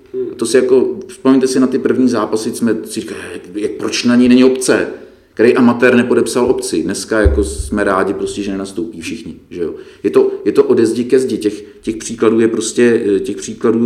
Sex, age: male, 40-59